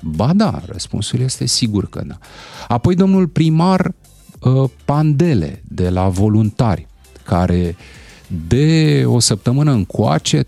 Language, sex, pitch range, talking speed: Romanian, male, 100-150 Hz, 110 wpm